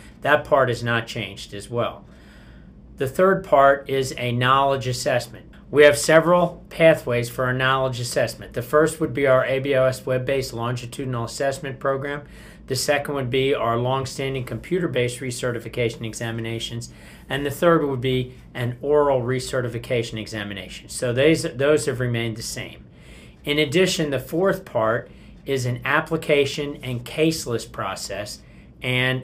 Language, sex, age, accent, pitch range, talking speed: English, male, 40-59, American, 120-145 Hz, 140 wpm